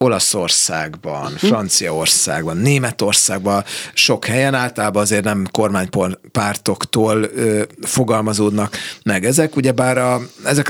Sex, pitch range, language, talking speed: male, 105-125 Hz, Hungarian, 90 wpm